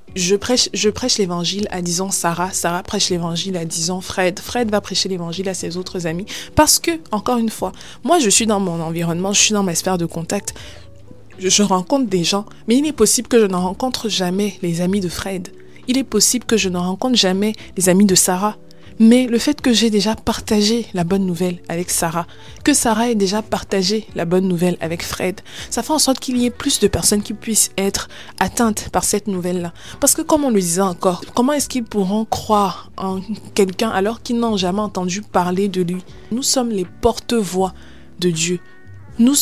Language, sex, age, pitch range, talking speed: French, female, 20-39, 180-225 Hz, 210 wpm